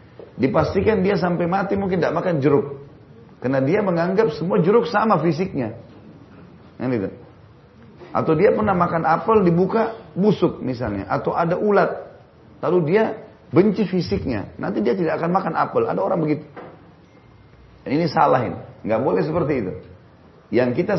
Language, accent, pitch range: Indonesian, native, 125-180 Hz